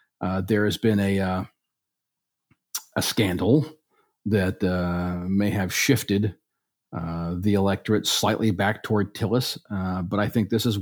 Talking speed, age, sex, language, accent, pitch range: 145 wpm, 40-59, male, English, American, 100-120 Hz